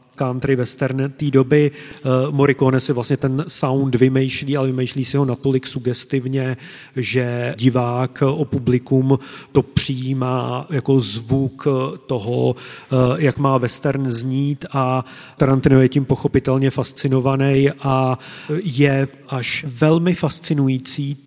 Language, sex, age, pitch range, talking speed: Czech, male, 40-59, 130-145 Hz, 115 wpm